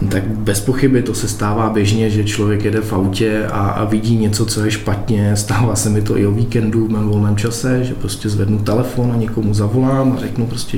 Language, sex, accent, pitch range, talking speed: Czech, male, native, 95-105 Hz, 215 wpm